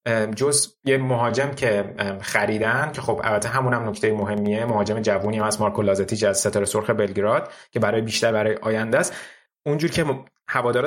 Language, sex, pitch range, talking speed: Persian, male, 105-120 Hz, 165 wpm